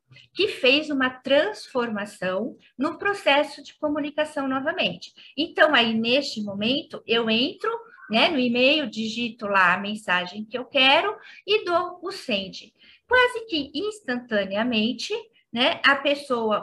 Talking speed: 125 wpm